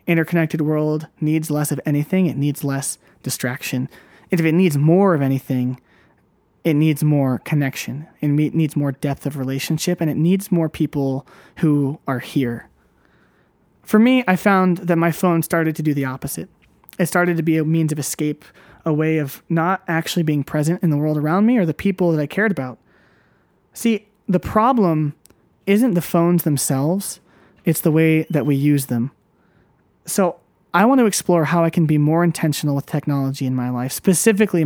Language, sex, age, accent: English, male, 20-39, American